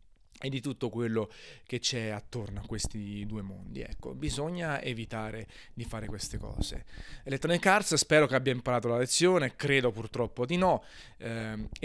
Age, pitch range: 30-49, 110-135 Hz